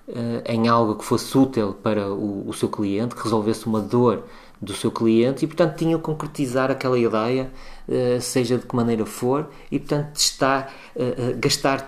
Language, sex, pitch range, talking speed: Portuguese, male, 105-130 Hz, 165 wpm